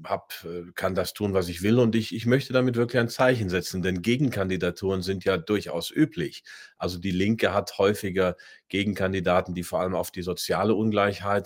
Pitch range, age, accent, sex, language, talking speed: 90-110 Hz, 40-59, German, male, German, 185 wpm